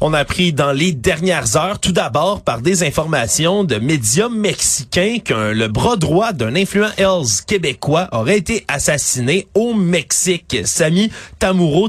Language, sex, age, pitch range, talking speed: French, male, 30-49, 140-185 Hz, 150 wpm